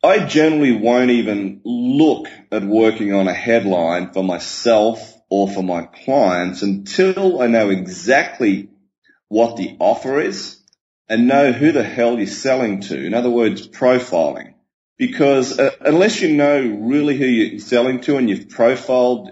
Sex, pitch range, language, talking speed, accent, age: male, 100-125 Hz, English, 150 wpm, Australian, 30-49